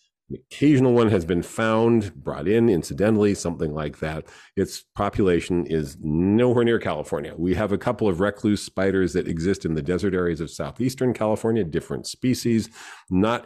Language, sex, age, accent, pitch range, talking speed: English, male, 40-59, American, 85-110 Hz, 160 wpm